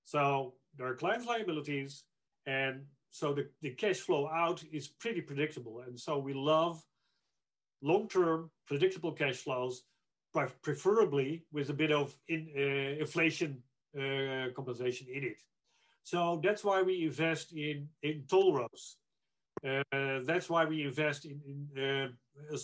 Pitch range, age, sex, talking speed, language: 135-170 Hz, 40-59, male, 140 wpm, English